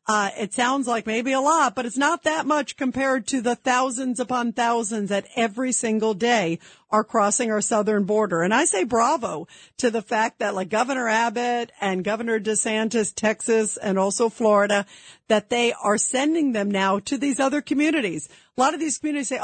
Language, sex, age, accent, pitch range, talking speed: English, female, 50-69, American, 215-280 Hz, 190 wpm